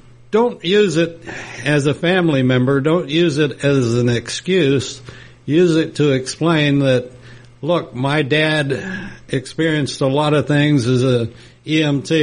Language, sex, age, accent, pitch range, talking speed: English, male, 60-79, American, 125-155 Hz, 140 wpm